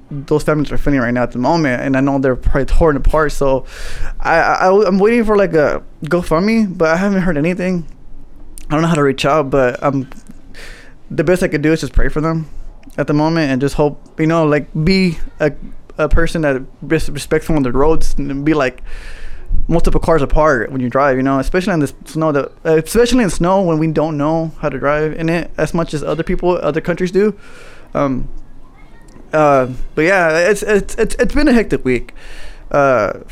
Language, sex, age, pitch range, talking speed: English, male, 20-39, 135-170 Hz, 215 wpm